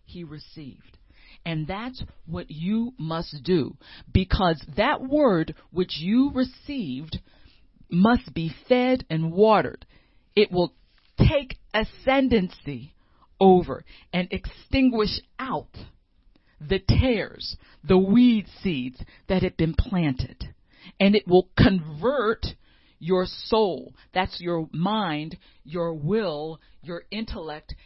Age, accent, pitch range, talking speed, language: 50-69, American, 160-220 Hz, 105 wpm, English